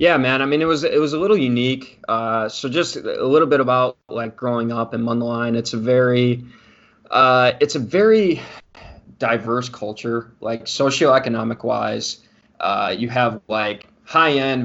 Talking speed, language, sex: 155 wpm, English, male